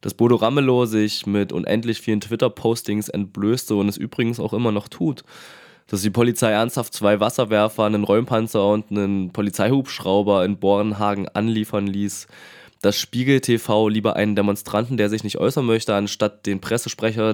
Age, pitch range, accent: 20-39, 100-110 Hz, German